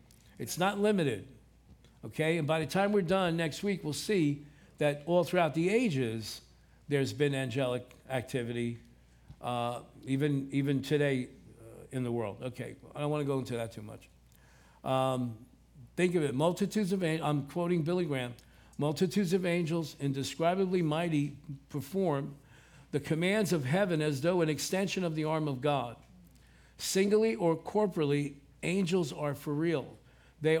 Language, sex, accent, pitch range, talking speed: English, male, American, 140-175 Hz, 155 wpm